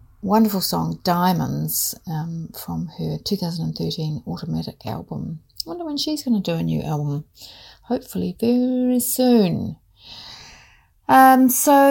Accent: British